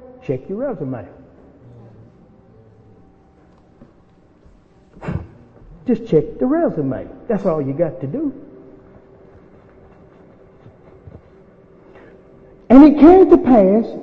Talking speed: 75 wpm